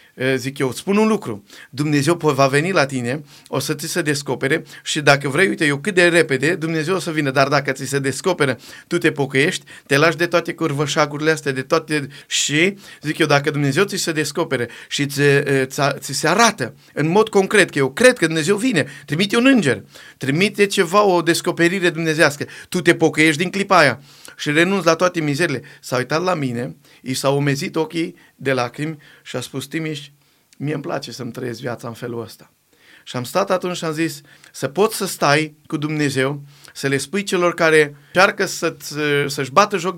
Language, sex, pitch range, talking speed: Romanian, male, 140-175 Hz, 195 wpm